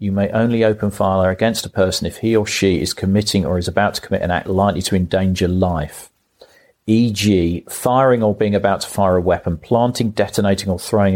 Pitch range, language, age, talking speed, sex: 90-105 Hz, English, 40-59, 205 wpm, male